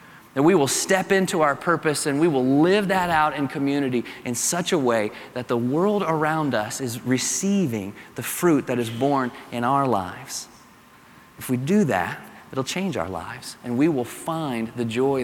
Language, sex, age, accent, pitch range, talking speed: English, male, 30-49, American, 115-145 Hz, 190 wpm